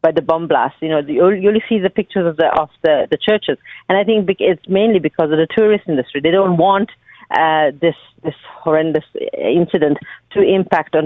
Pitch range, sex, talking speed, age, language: 155-205 Hz, female, 210 wpm, 40-59, English